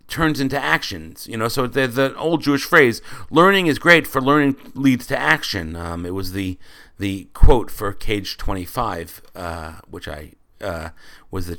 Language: English